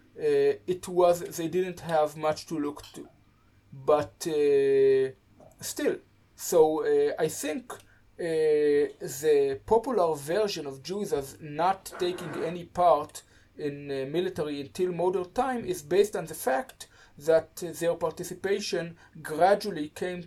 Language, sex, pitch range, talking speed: English, male, 145-215 Hz, 135 wpm